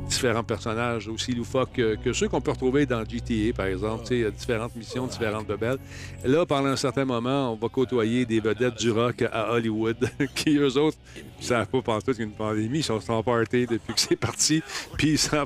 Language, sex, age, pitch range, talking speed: French, male, 50-69, 115-150 Hz, 215 wpm